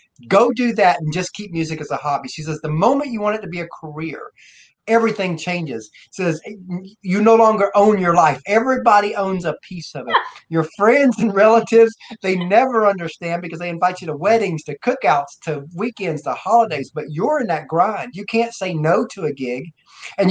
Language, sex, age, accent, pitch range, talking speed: English, male, 30-49, American, 165-215 Hz, 205 wpm